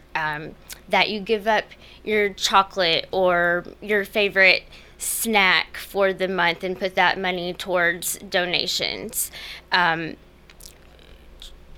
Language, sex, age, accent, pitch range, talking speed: English, female, 10-29, American, 175-205 Hz, 105 wpm